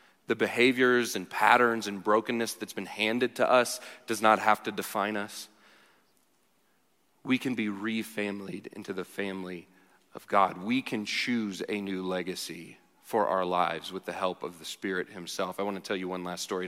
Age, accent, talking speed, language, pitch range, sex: 30-49, American, 175 wpm, English, 105-140 Hz, male